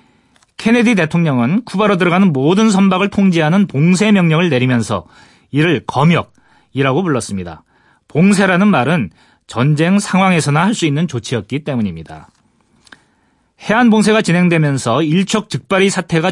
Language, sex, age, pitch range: Korean, male, 30-49, 135-195 Hz